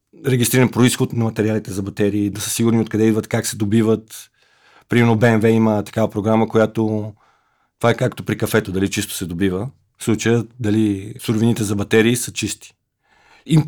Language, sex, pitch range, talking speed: Bulgarian, male, 105-125 Hz, 165 wpm